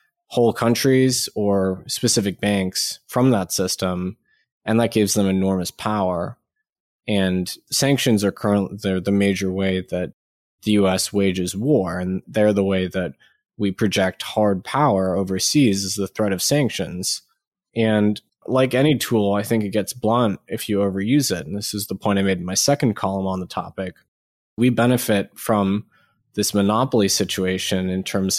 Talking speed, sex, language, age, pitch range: 160 wpm, male, English, 20-39, 95-115 Hz